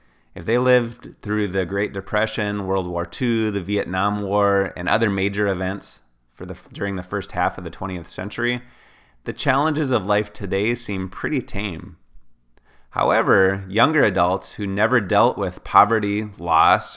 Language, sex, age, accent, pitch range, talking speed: English, male, 30-49, American, 85-105 Hz, 150 wpm